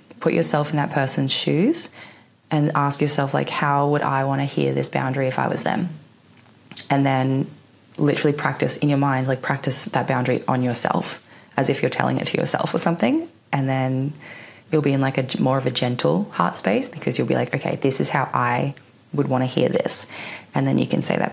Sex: female